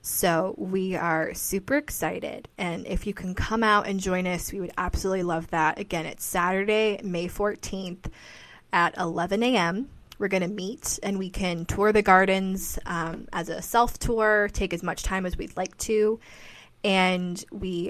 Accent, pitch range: American, 175-200 Hz